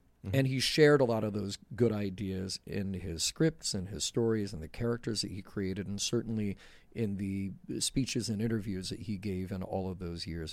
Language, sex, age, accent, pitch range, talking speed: English, male, 40-59, American, 90-115 Hz, 205 wpm